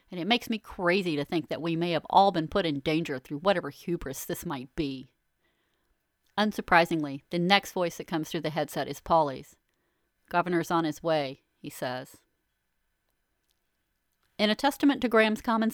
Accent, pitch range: American, 160-200 Hz